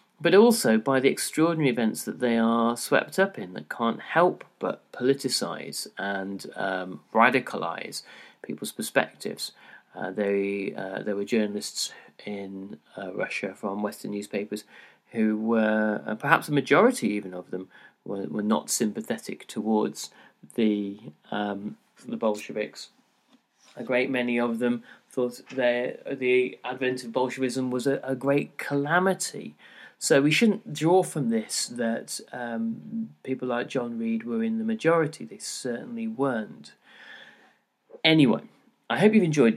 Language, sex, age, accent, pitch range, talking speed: English, male, 30-49, British, 120-170 Hz, 140 wpm